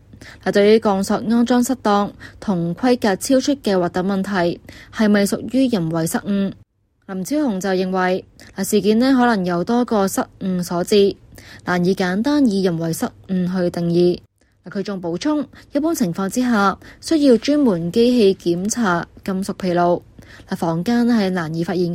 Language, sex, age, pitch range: Chinese, female, 20-39, 175-230 Hz